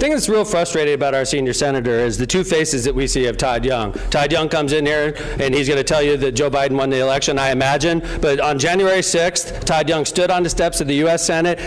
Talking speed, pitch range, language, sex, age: 265 wpm, 160-220 Hz, English, male, 40-59